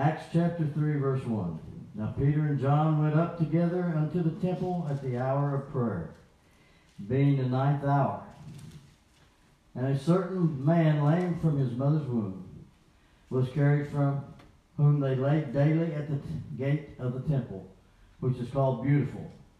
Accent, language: American, English